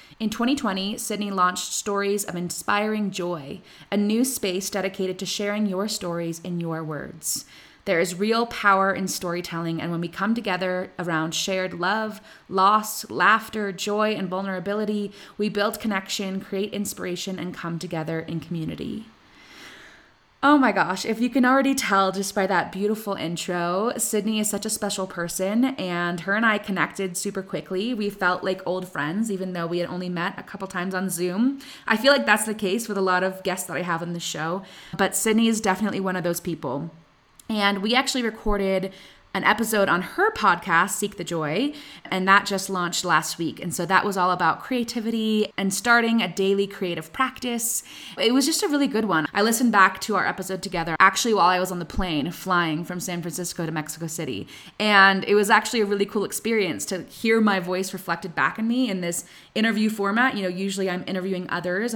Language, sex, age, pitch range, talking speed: English, female, 20-39, 180-215 Hz, 195 wpm